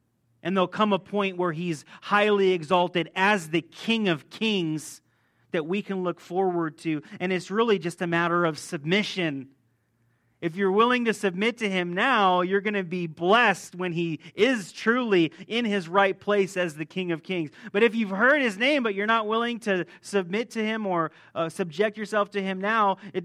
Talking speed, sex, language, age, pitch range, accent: 195 wpm, male, English, 30-49, 175-220 Hz, American